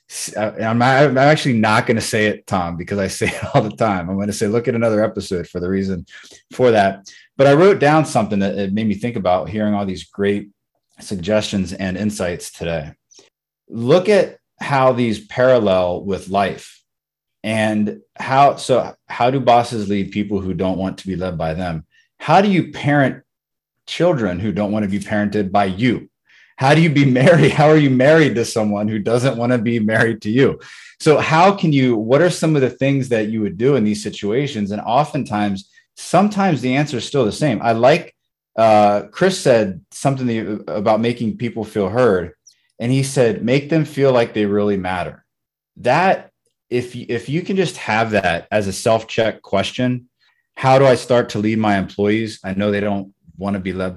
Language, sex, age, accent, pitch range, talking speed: English, male, 30-49, American, 100-135 Hz, 200 wpm